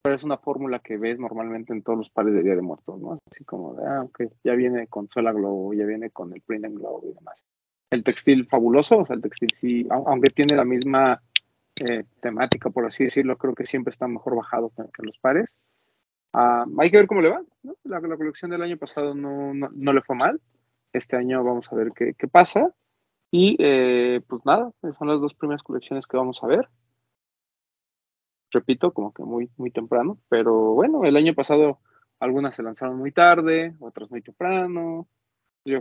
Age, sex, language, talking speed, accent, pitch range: 30-49, male, Spanish, 200 wpm, Mexican, 115-150 Hz